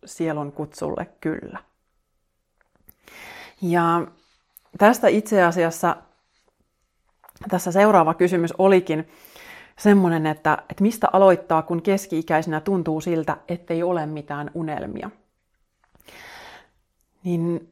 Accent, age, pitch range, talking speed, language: native, 30-49, 160-200 Hz, 85 wpm, Finnish